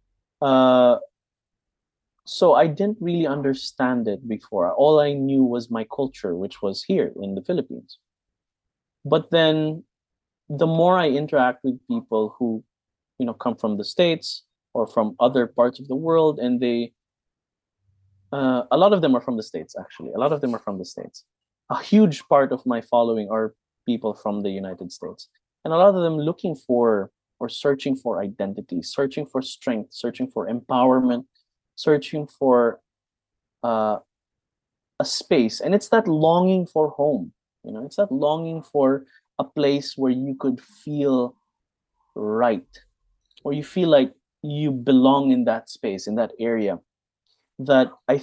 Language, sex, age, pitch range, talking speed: English, male, 20-39, 115-150 Hz, 160 wpm